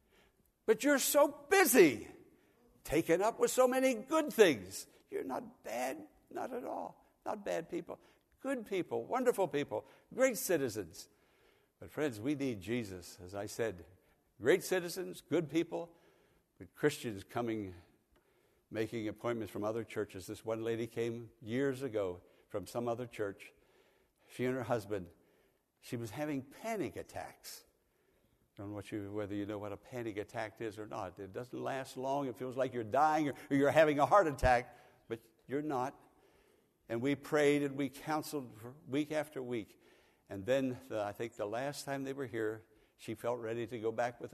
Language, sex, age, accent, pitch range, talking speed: English, male, 60-79, American, 110-145 Hz, 170 wpm